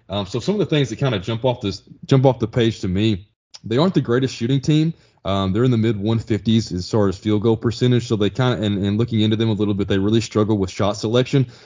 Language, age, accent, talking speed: English, 20-39, American, 280 wpm